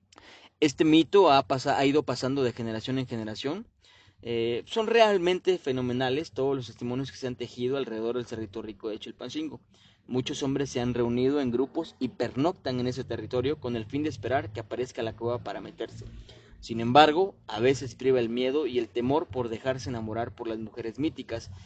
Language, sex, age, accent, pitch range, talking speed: Spanish, male, 30-49, Mexican, 115-140 Hz, 190 wpm